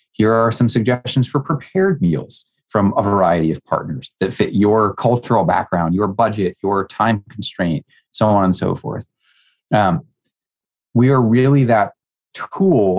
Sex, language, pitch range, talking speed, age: male, English, 95-125 Hz, 150 wpm, 30-49